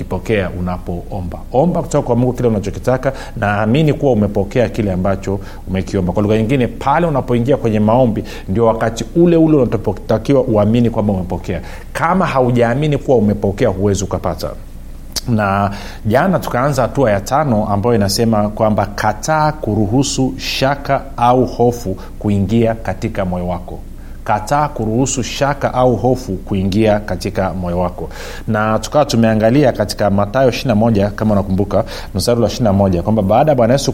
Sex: male